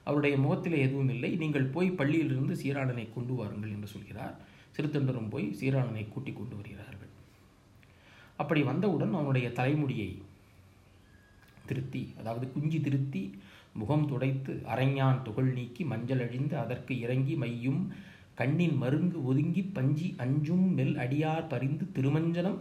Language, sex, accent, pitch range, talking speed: Tamil, male, native, 105-145 Hz, 115 wpm